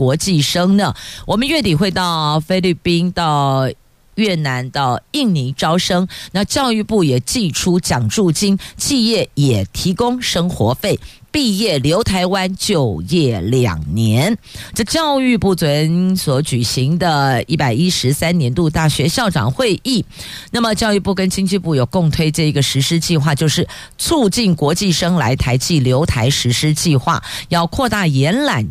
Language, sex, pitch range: Chinese, female, 140-190 Hz